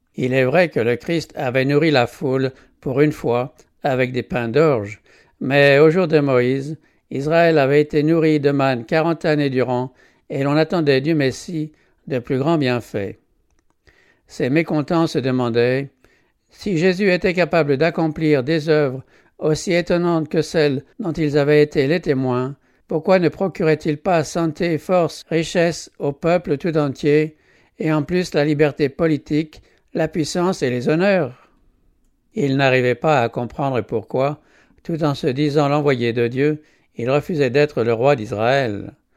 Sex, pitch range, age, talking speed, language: male, 135-160 Hz, 60-79, 160 wpm, English